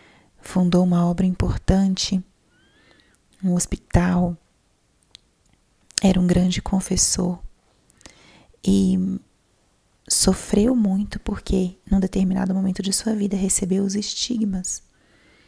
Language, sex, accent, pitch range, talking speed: Portuguese, female, Brazilian, 185-200 Hz, 90 wpm